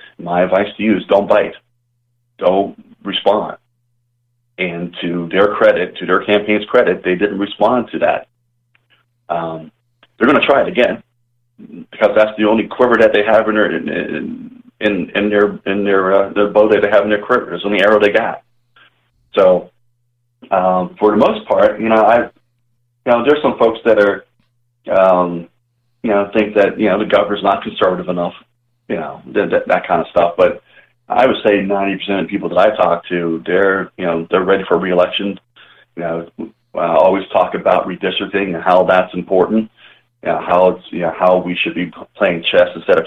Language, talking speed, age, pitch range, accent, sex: English, 195 wpm, 40-59, 90-120 Hz, American, male